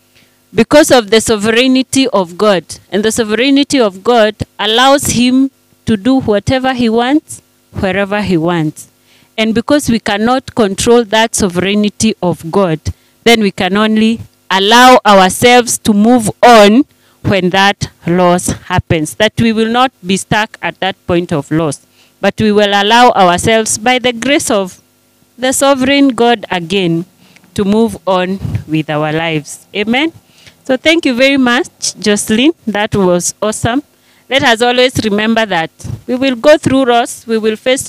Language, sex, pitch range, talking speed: English, female, 185-245 Hz, 150 wpm